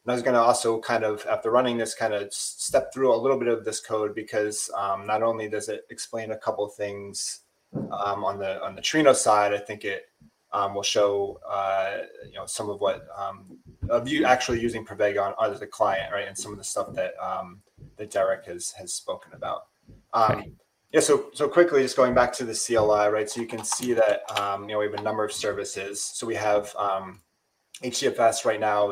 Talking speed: 225 wpm